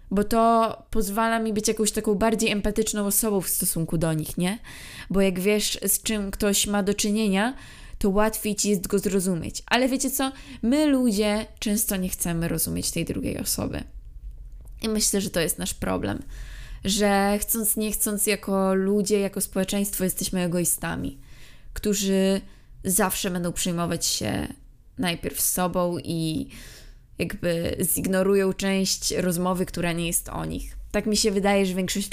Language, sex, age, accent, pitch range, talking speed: Polish, female, 20-39, native, 185-215 Hz, 155 wpm